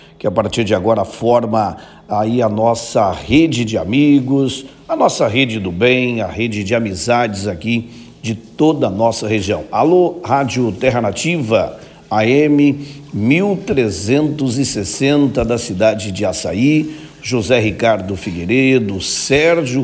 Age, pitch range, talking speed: 50-69, 110-140 Hz, 125 wpm